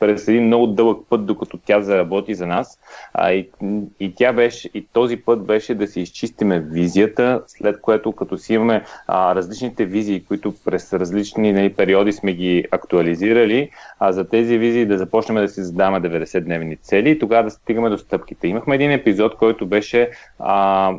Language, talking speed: Bulgarian, 175 wpm